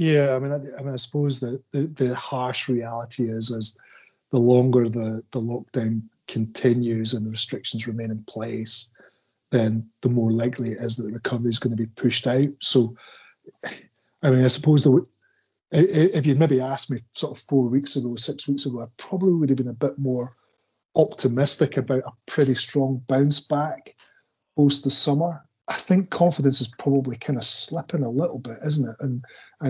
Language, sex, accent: English, male, British